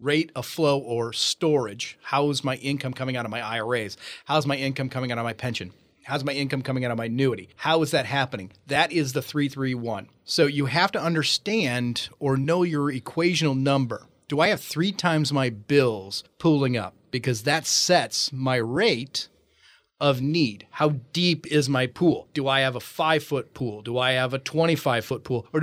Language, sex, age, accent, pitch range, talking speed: English, male, 30-49, American, 125-160 Hz, 190 wpm